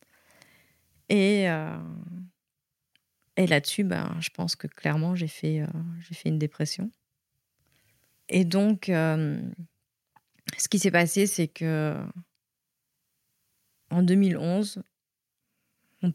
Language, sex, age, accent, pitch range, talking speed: French, female, 30-49, French, 155-185 Hz, 105 wpm